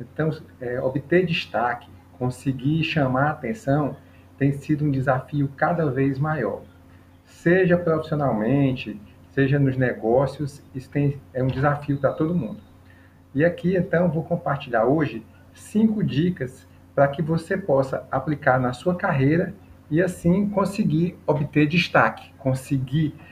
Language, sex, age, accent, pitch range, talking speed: Portuguese, male, 40-59, Brazilian, 125-165 Hz, 130 wpm